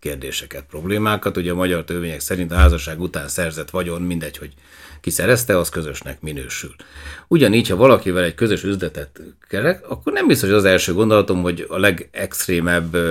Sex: male